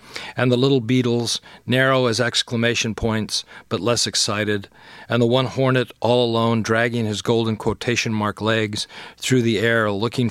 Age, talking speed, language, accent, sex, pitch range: 40-59, 150 wpm, English, American, male, 110-125 Hz